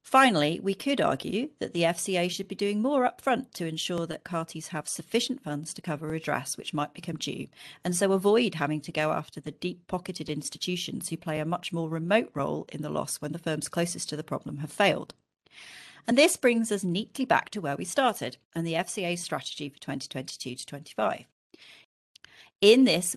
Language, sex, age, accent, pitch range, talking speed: English, female, 40-59, British, 160-205 Hz, 195 wpm